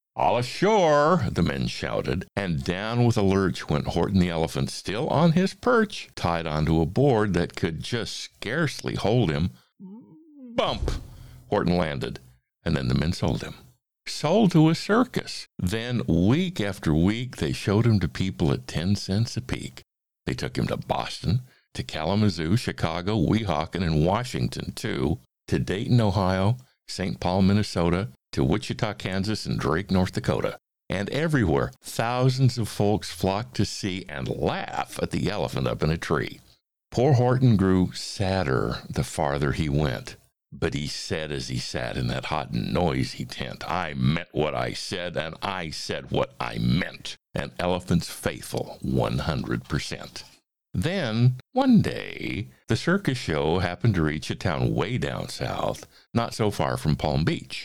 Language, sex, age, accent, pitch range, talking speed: English, male, 60-79, American, 80-125 Hz, 160 wpm